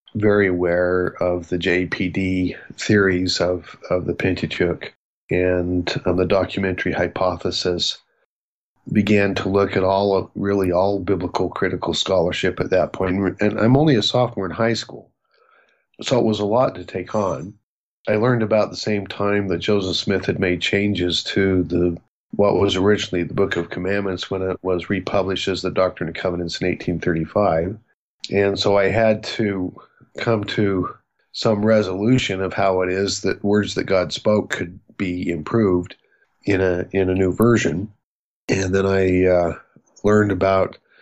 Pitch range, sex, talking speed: 90-100 Hz, male, 160 wpm